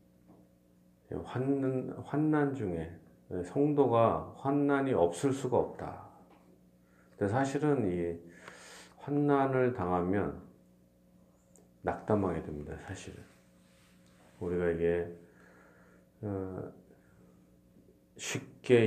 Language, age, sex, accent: Korean, 40-59, male, native